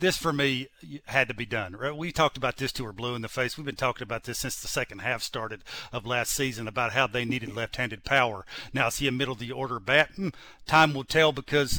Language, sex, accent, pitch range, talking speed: English, male, American, 130-160 Hz, 235 wpm